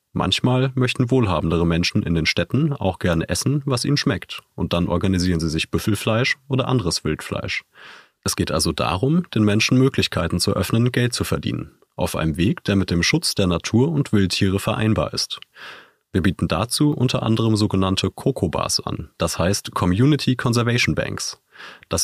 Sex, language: male, German